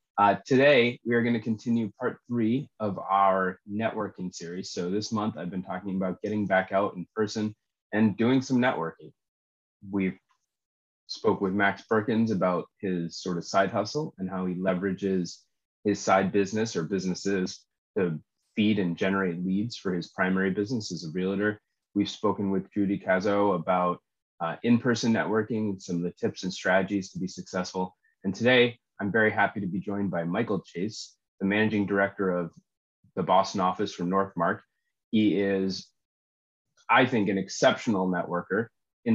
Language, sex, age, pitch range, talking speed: English, male, 30-49, 95-110 Hz, 165 wpm